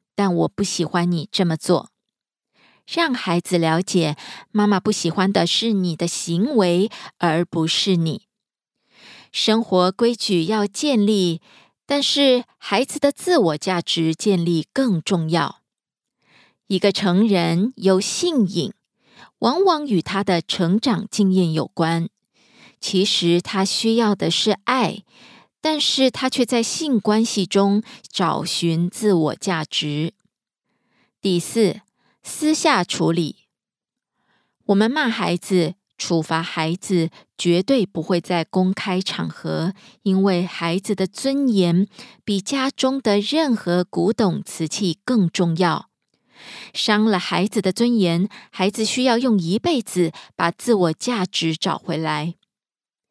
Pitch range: 175-225 Hz